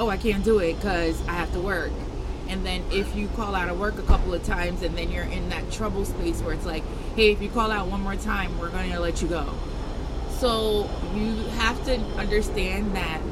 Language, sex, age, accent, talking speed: English, female, 20-39, American, 235 wpm